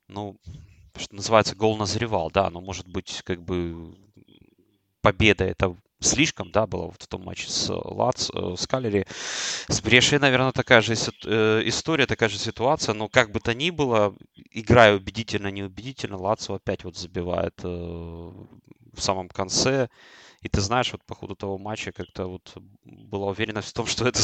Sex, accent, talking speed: male, native, 160 wpm